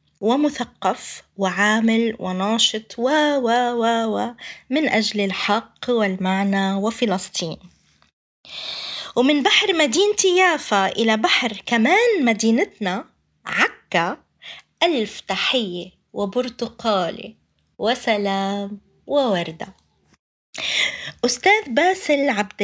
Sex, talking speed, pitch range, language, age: female, 75 wpm, 195-270 Hz, Arabic, 20-39